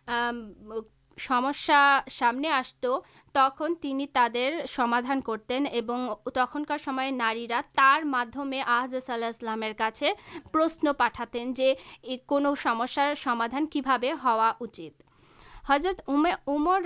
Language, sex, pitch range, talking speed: Urdu, female, 240-285 Hz, 75 wpm